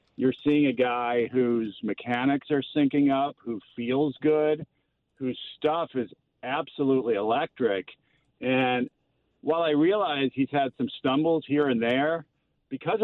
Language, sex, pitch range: English, male, 120-140 Hz